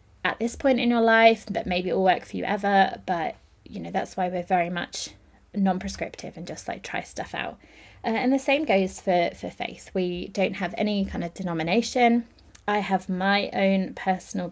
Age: 20-39